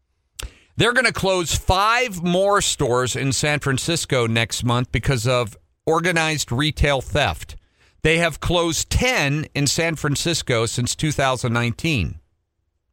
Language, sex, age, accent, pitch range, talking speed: English, male, 50-69, American, 115-155 Hz, 120 wpm